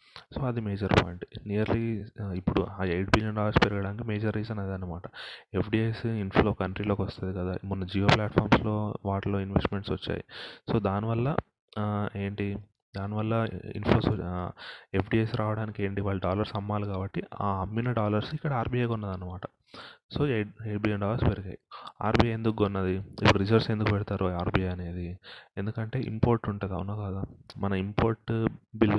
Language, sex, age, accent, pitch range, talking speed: Telugu, male, 30-49, native, 95-110 Hz, 135 wpm